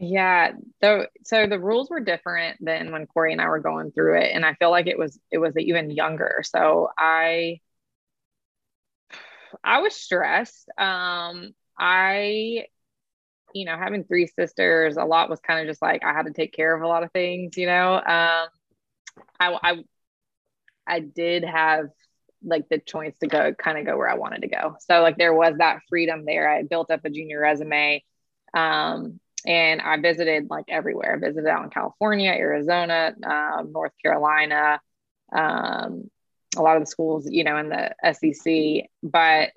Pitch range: 155-175 Hz